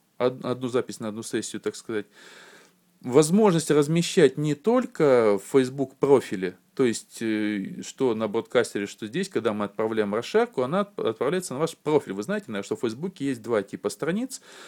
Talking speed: 160 wpm